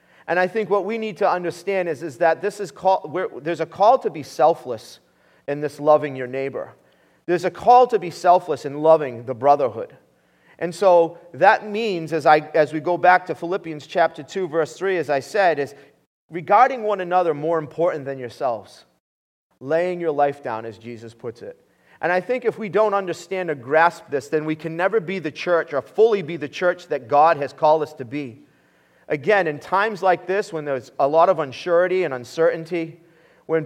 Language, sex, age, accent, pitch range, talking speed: English, male, 30-49, American, 150-185 Hz, 200 wpm